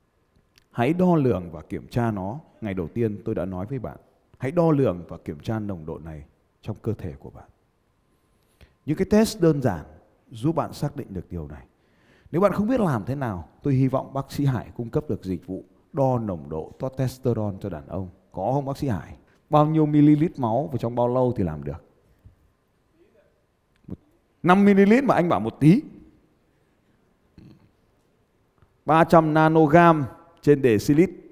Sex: male